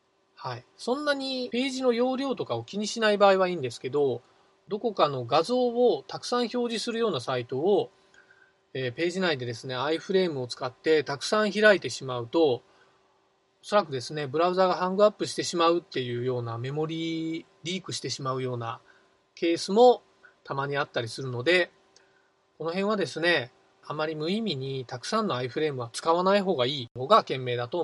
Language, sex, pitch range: Japanese, male, 135-215 Hz